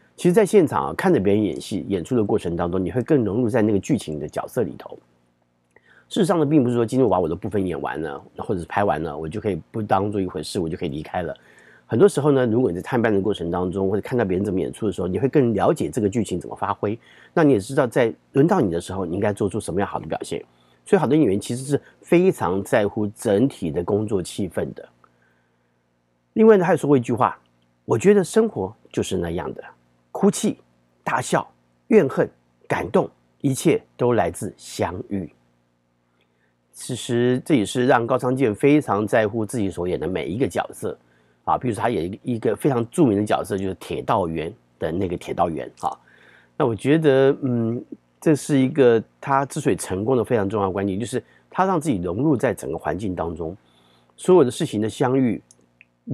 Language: Chinese